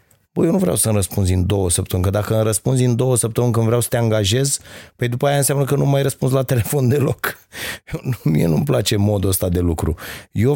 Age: 30-49